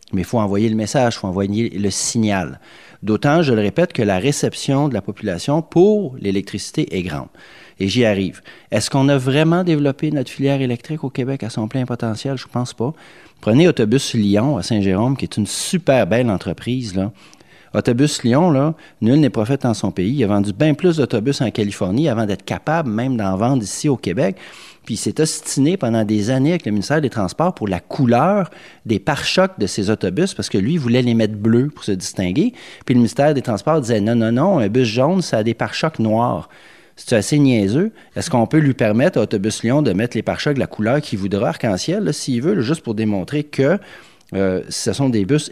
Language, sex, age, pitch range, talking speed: French, male, 40-59, 110-145 Hz, 215 wpm